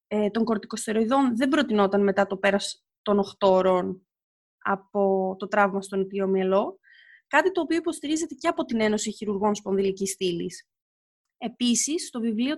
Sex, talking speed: female, 140 wpm